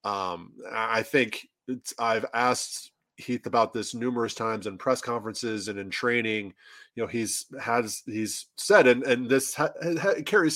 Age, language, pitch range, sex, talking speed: 20-39, English, 110-140 Hz, male, 165 wpm